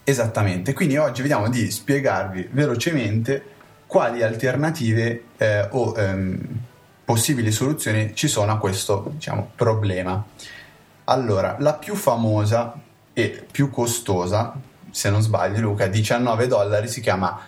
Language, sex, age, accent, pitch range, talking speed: Italian, male, 20-39, native, 105-130 Hz, 120 wpm